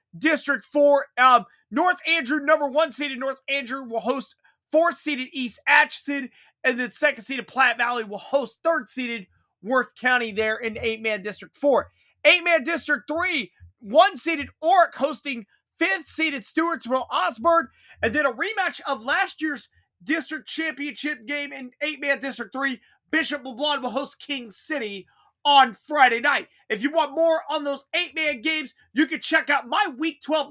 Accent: American